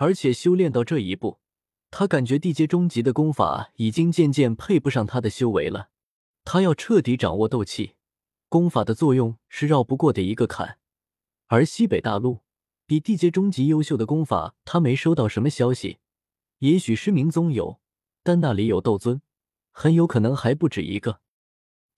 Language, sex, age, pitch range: Chinese, male, 20-39, 115-160 Hz